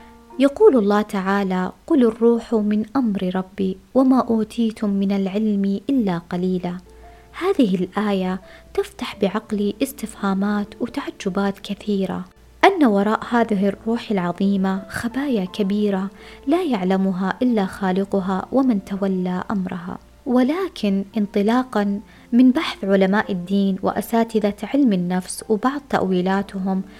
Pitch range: 195-235 Hz